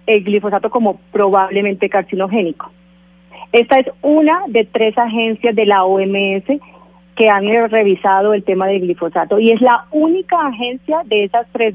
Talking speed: 150 wpm